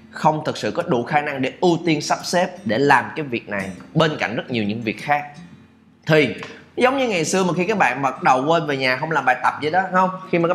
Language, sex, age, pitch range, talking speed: Vietnamese, male, 20-39, 125-175 Hz, 275 wpm